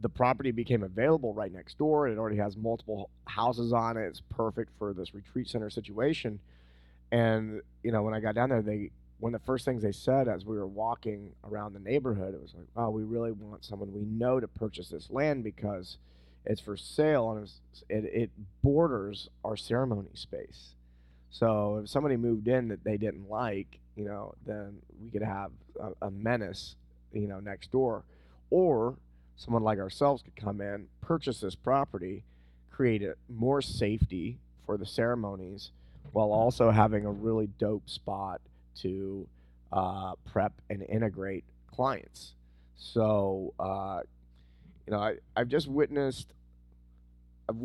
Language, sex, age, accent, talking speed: English, male, 30-49, American, 165 wpm